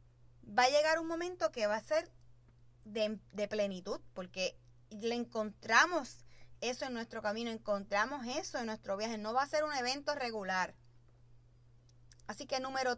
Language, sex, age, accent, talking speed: Spanish, female, 20-39, American, 155 wpm